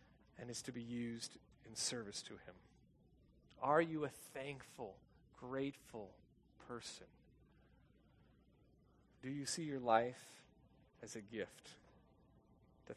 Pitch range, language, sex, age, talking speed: 120-160 Hz, English, male, 40-59, 110 wpm